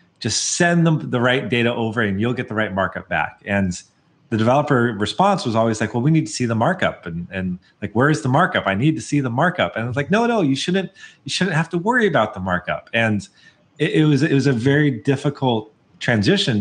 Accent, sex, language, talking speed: American, male, English, 240 wpm